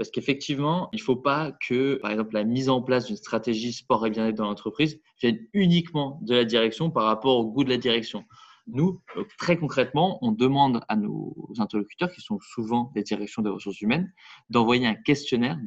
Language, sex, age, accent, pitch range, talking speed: French, male, 20-39, French, 120-175 Hz, 195 wpm